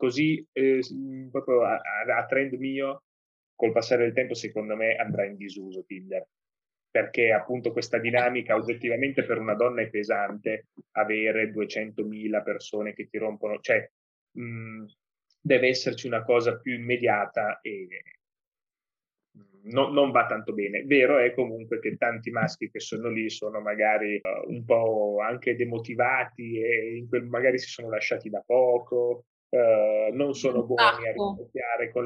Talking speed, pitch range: 140 wpm, 110-125 Hz